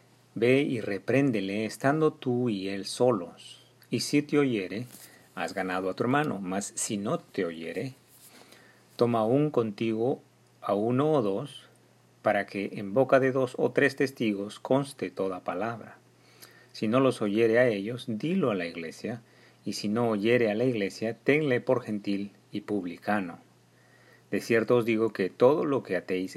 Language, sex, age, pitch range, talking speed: Spanish, male, 40-59, 95-125 Hz, 165 wpm